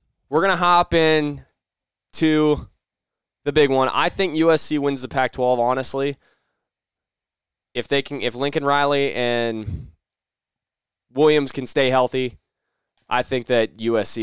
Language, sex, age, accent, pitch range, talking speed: English, male, 10-29, American, 105-135 Hz, 130 wpm